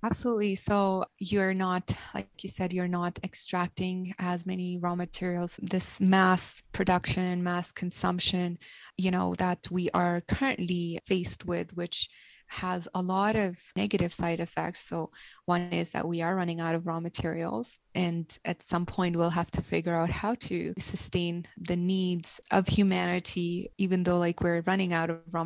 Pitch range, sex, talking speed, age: 170-185 Hz, female, 165 wpm, 20-39